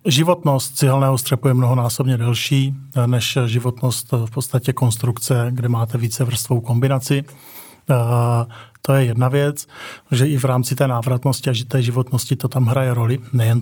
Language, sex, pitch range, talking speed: Czech, male, 125-140 Hz, 145 wpm